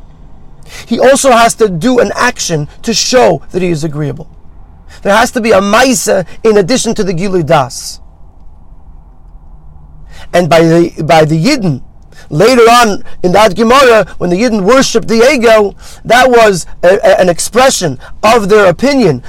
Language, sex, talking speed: English, male, 155 wpm